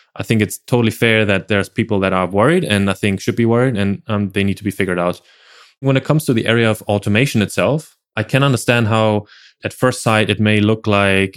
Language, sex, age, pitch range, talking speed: English, male, 20-39, 100-115 Hz, 240 wpm